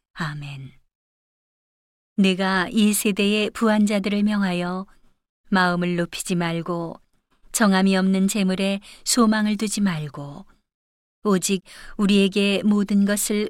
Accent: native